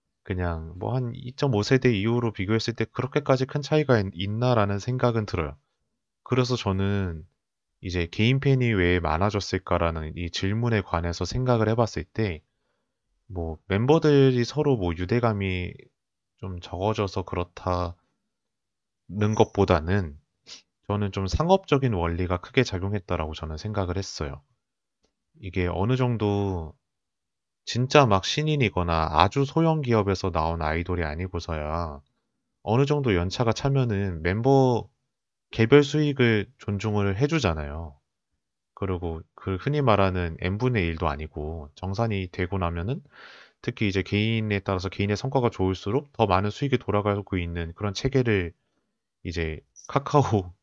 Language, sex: Korean, male